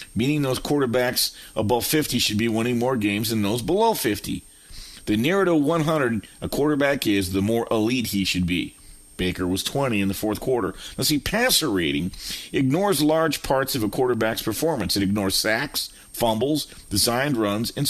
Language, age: English, 50-69